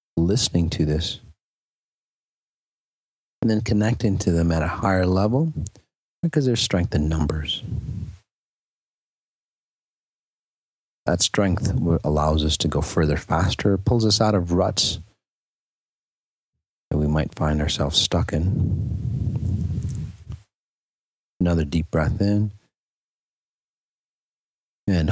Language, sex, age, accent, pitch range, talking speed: English, male, 40-59, American, 75-105 Hz, 100 wpm